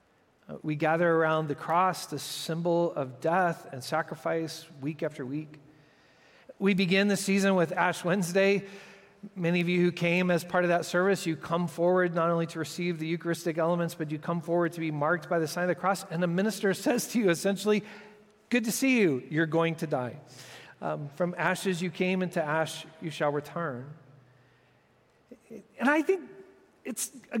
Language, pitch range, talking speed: English, 155-190 Hz, 185 wpm